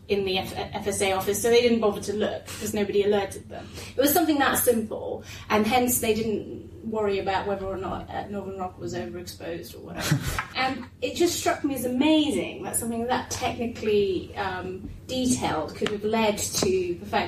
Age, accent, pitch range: 30-49, British, 205-260 Hz